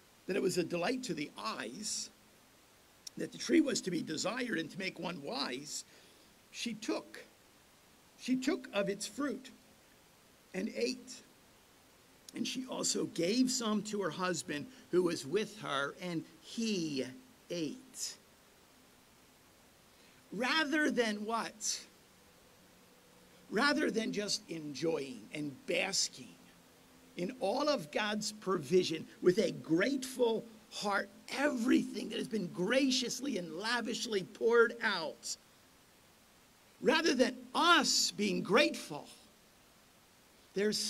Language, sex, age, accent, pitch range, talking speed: English, male, 50-69, American, 200-270 Hz, 110 wpm